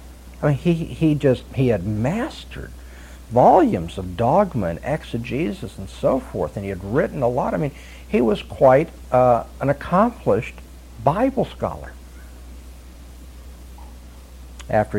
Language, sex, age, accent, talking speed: English, male, 60-79, American, 130 wpm